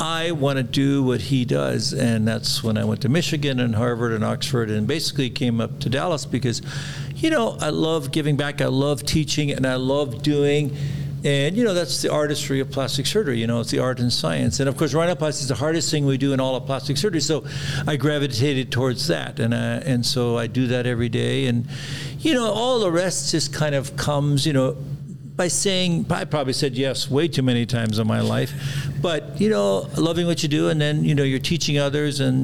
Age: 60-79